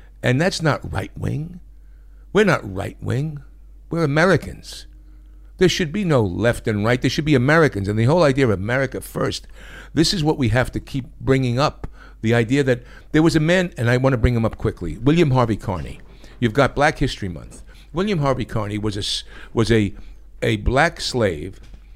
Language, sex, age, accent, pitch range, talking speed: English, male, 60-79, American, 115-145 Hz, 190 wpm